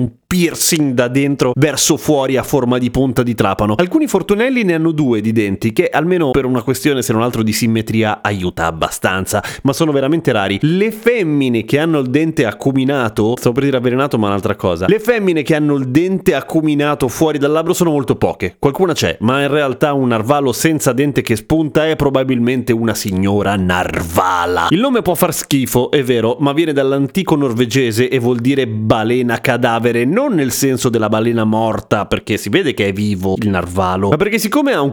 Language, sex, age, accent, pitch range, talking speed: Italian, male, 30-49, native, 115-155 Hz, 195 wpm